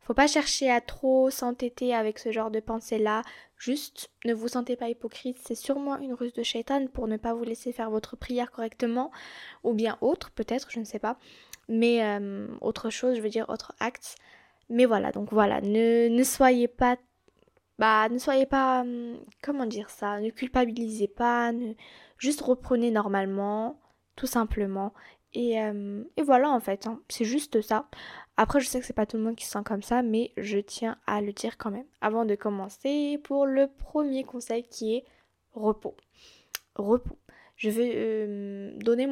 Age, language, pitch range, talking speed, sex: 10-29, French, 220-255 Hz, 185 wpm, female